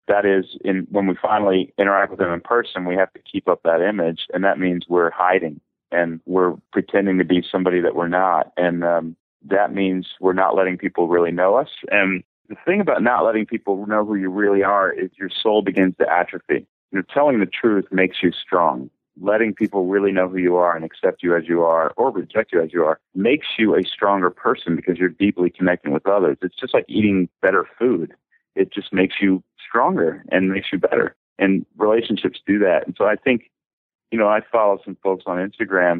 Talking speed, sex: 215 wpm, male